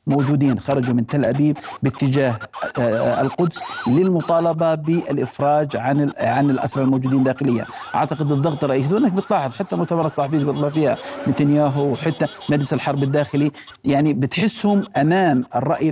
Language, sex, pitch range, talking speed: Arabic, male, 145-190 Hz, 130 wpm